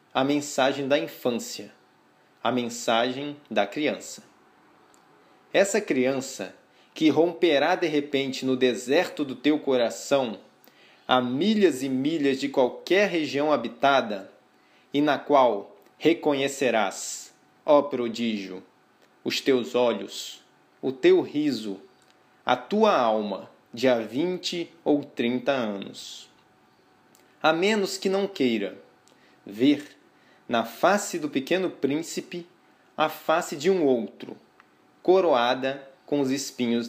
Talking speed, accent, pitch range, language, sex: 110 wpm, Brazilian, 125-175 Hz, Portuguese, male